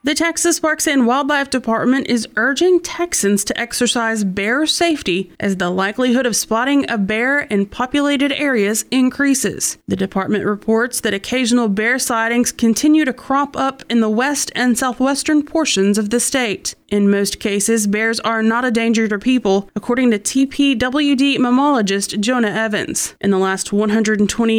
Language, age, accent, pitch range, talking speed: English, 30-49, American, 210-265 Hz, 155 wpm